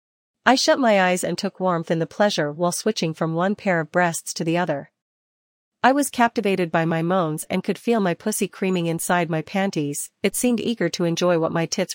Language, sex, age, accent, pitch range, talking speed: English, female, 40-59, American, 165-200 Hz, 215 wpm